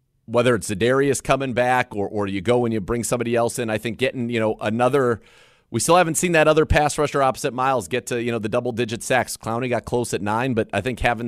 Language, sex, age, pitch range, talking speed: English, male, 40-59, 110-130 Hz, 255 wpm